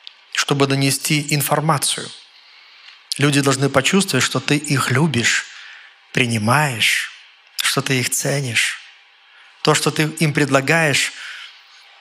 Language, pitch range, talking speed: Russian, 135-180 Hz, 100 wpm